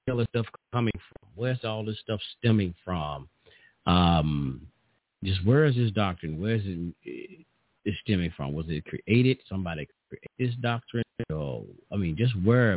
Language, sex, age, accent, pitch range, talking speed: English, male, 50-69, American, 100-160 Hz, 170 wpm